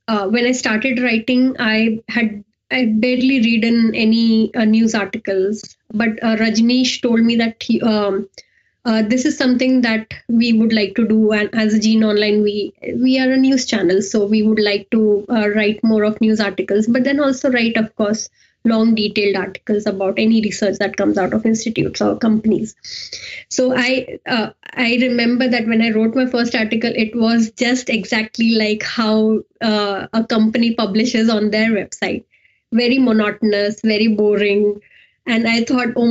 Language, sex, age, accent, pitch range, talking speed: English, female, 20-39, Indian, 215-245 Hz, 175 wpm